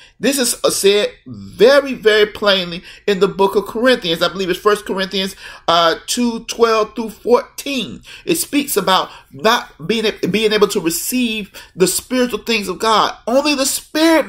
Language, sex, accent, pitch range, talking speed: English, male, American, 190-260 Hz, 160 wpm